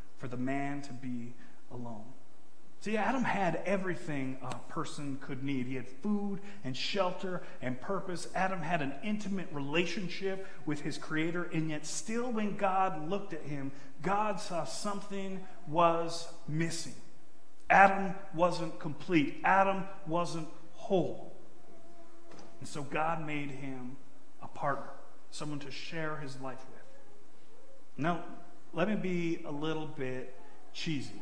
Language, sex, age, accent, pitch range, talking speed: English, male, 40-59, American, 135-185 Hz, 135 wpm